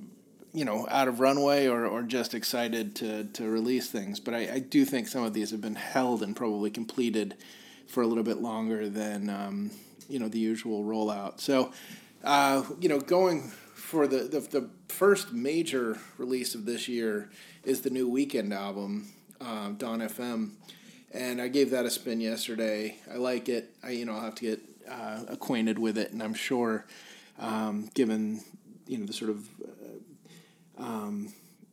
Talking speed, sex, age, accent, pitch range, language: 180 wpm, male, 30-49, American, 110-130 Hz, English